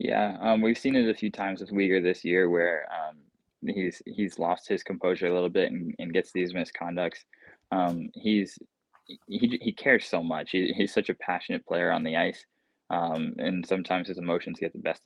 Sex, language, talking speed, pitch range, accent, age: male, English, 205 wpm, 90-100 Hz, American, 20-39